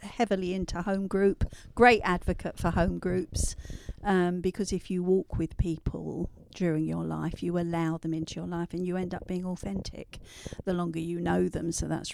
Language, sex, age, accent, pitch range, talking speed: English, female, 50-69, British, 160-205 Hz, 190 wpm